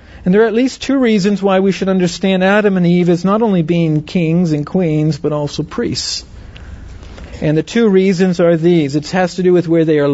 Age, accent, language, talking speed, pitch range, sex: 50-69, American, English, 225 wpm, 160-200 Hz, male